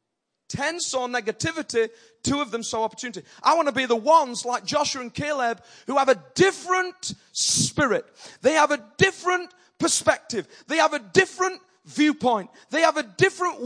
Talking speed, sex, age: 165 wpm, male, 30-49